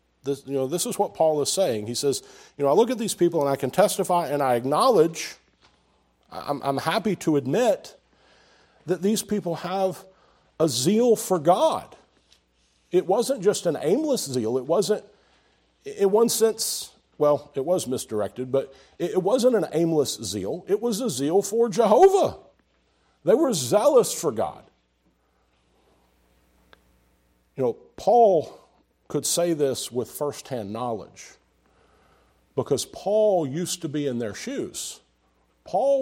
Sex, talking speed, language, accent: male, 145 wpm, English, American